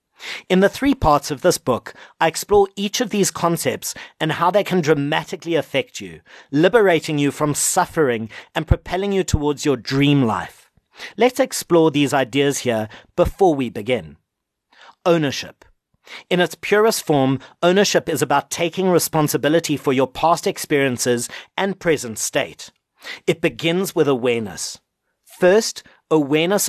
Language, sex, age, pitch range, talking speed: English, male, 50-69, 140-185 Hz, 140 wpm